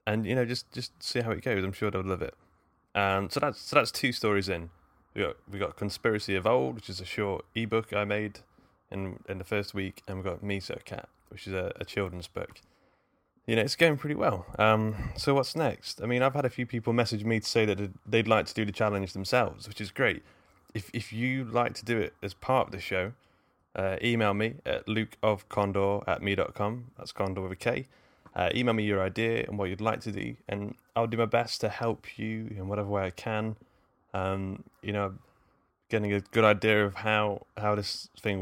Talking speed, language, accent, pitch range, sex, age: 230 wpm, English, British, 95-115 Hz, male, 20-39